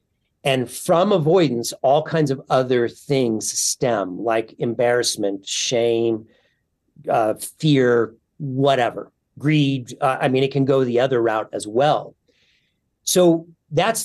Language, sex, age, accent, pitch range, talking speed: English, male, 40-59, American, 120-150 Hz, 125 wpm